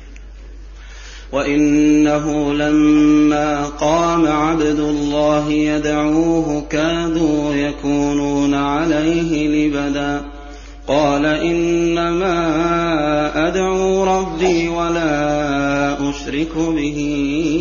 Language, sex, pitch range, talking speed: Arabic, male, 145-185 Hz, 60 wpm